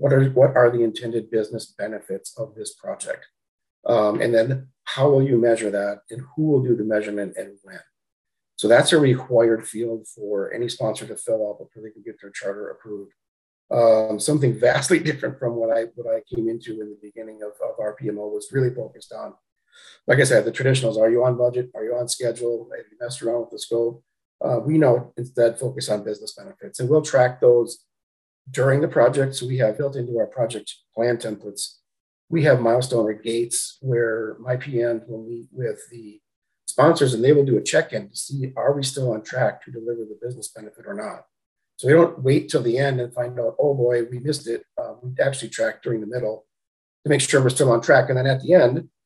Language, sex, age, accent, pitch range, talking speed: English, male, 40-59, American, 110-135 Hz, 215 wpm